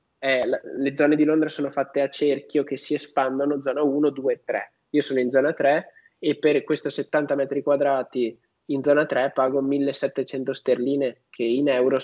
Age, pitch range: 20-39, 135-155 Hz